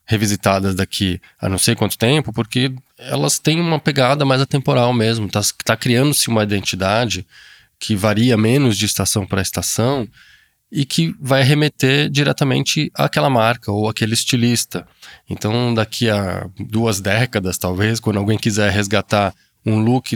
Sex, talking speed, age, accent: male, 145 wpm, 20-39, Brazilian